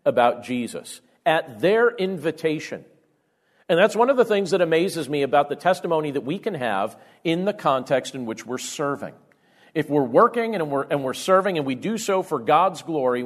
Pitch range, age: 135-185 Hz, 40-59